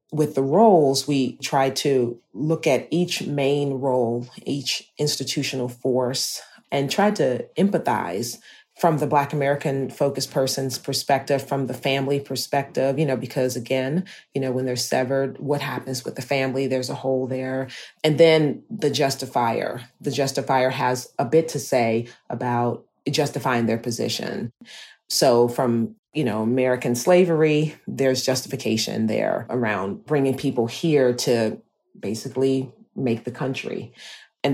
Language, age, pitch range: English, 30-49, 120-145 Hz